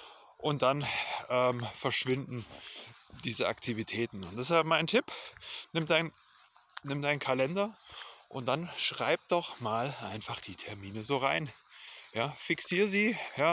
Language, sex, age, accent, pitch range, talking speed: German, male, 30-49, German, 120-155 Hz, 130 wpm